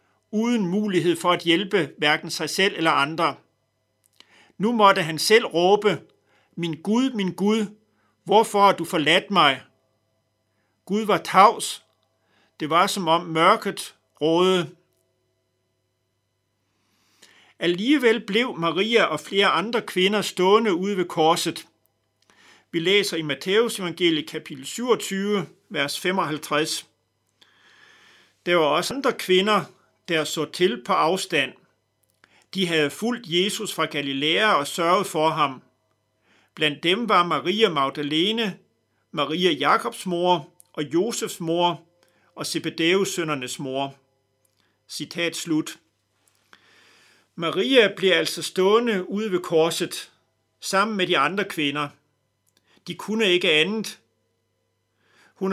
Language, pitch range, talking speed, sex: Danish, 145-200 Hz, 115 wpm, male